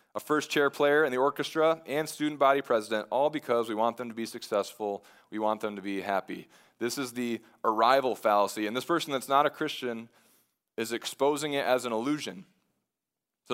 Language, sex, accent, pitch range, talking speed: English, male, American, 110-145 Hz, 195 wpm